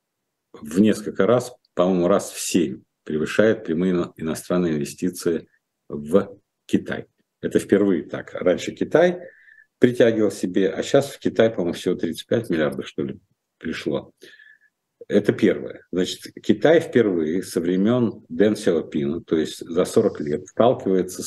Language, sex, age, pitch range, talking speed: Russian, male, 50-69, 90-125 Hz, 130 wpm